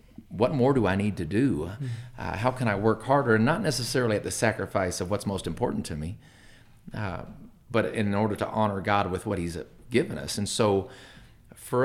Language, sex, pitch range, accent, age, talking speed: English, male, 95-120 Hz, American, 40-59, 205 wpm